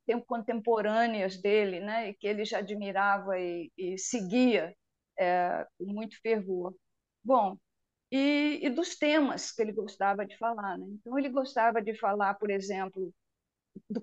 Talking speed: 145 wpm